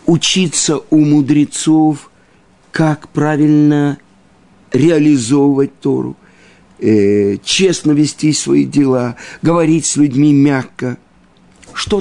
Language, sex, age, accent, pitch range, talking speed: Russian, male, 50-69, native, 110-160 Hz, 80 wpm